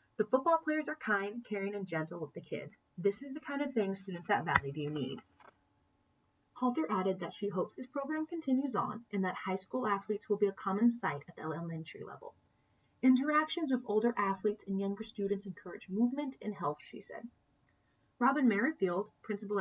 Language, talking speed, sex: English, 185 wpm, female